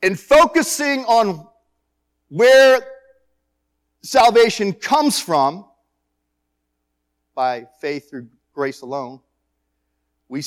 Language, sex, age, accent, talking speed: English, male, 40-59, American, 75 wpm